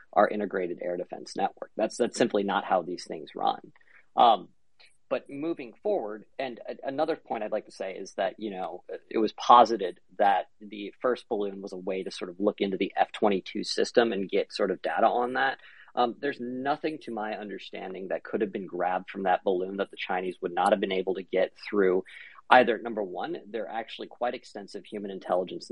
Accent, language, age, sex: American, English, 40-59, male